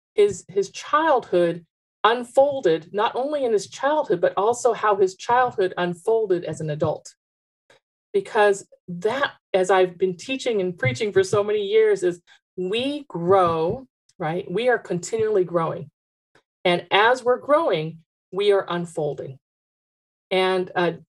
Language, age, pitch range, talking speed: English, 40-59, 175-215 Hz, 135 wpm